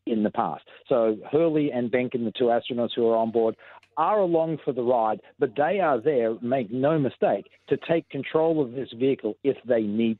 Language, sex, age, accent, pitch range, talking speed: English, male, 50-69, Australian, 115-135 Hz, 205 wpm